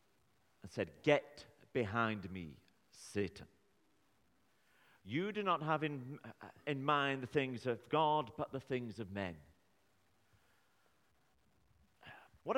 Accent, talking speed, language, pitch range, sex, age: British, 105 wpm, English, 110-165 Hz, male, 50-69